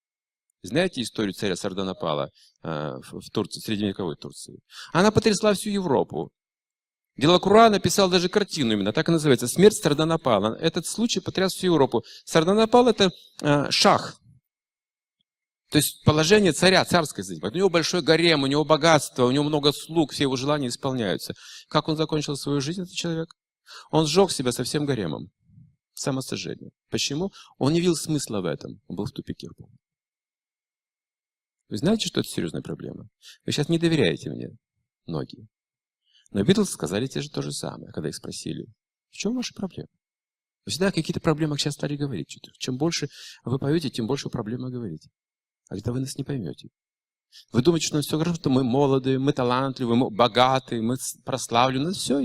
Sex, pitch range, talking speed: male, 125-175 Hz, 165 wpm